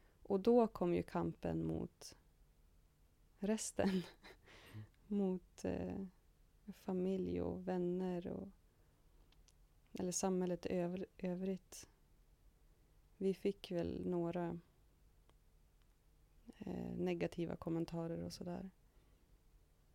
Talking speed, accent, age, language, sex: 70 wpm, native, 20-39, Swedish, female